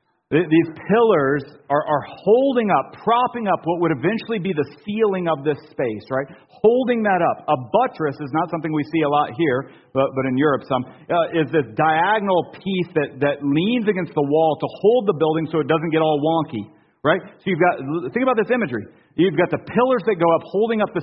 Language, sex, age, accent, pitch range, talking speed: English, male, 40-59, American, 160-205 Hz, 205 wpm